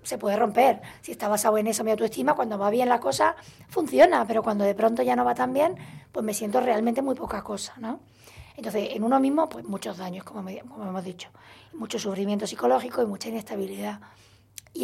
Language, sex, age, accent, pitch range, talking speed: Spanish, female, 20-39, Spanish, 195-240 Hz, 210 wpm